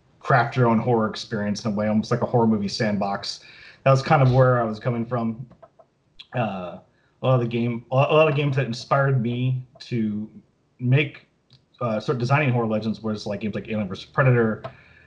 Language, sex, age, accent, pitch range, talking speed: English, male, 30-49, American, 105-125 Hz, 200 wpm